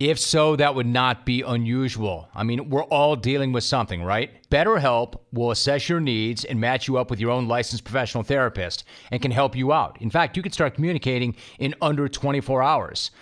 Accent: American